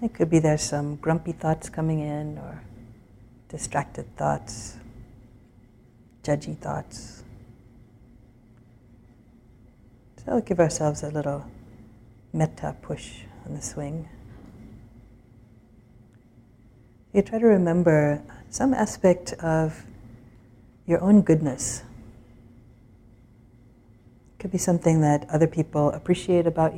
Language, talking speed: English, 100 wpm